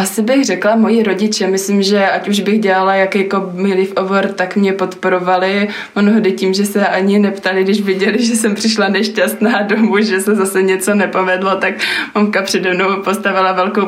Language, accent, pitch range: Czech, native, 175-195 Hz